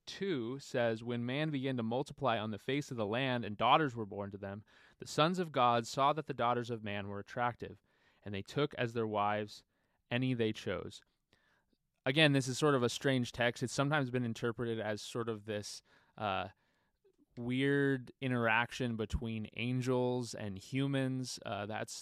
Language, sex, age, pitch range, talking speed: English, male, 20-39, 110-135 Hz, 175 wpm